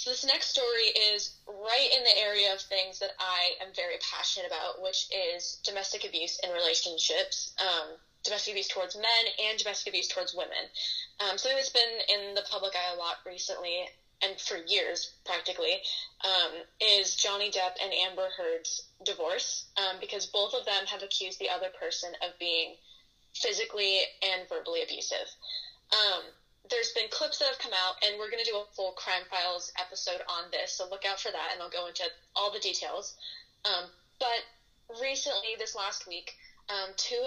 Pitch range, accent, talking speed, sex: 185-255 Hz, American, 180 wpm, female